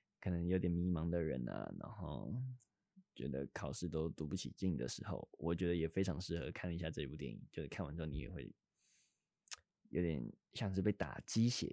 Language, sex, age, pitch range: Chinese, male, 20-39, 80-100 Hz